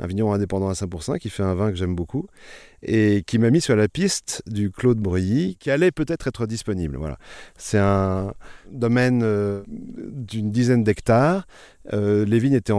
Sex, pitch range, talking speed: male, 95-120 Hz, 180 wpm